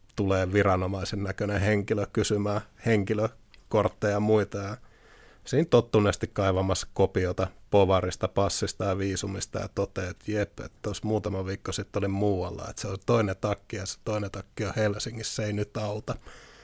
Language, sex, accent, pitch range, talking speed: Finnish, male, native, 95-110 Hz, 150 wpm